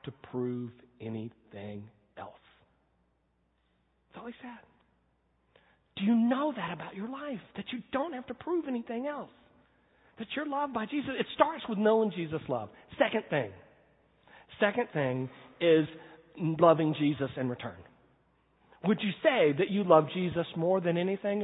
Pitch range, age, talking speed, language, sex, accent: 140-230 Hz, 40-59, 150 wpm, English, male, American